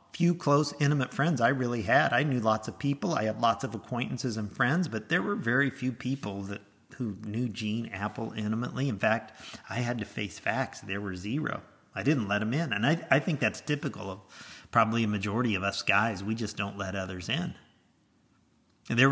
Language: English